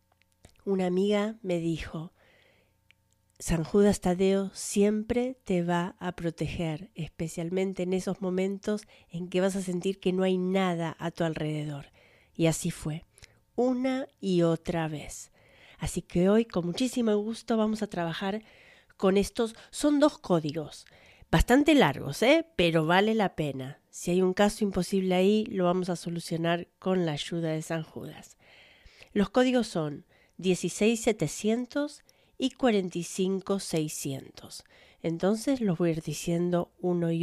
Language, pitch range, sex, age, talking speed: Spanish, 170-210 Hz, female, 40-59, 135 wpm